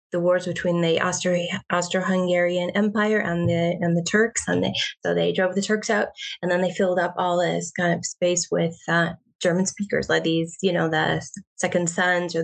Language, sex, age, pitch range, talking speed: English, female, 20-39, 170-190 Hz, 210 wpm